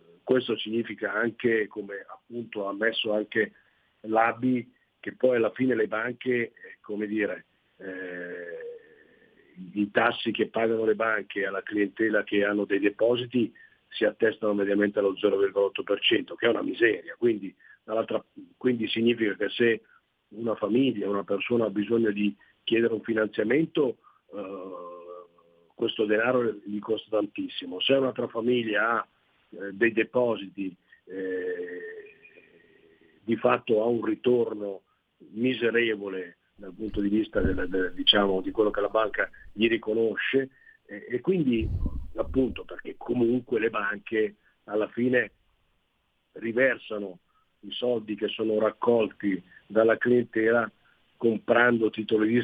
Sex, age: male, 40-59